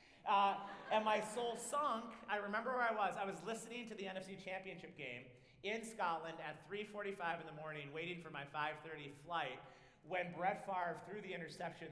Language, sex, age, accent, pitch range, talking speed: English, male, 40-59, American, 150-195 Hz, 180 wpm